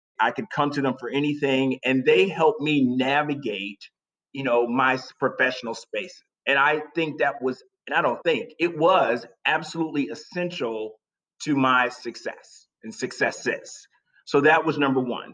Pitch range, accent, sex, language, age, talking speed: 125-165 Hz, American, male, English, 30-49, 160 wpm